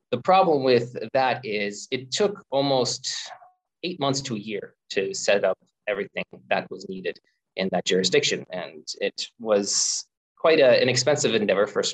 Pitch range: 110-160 Hz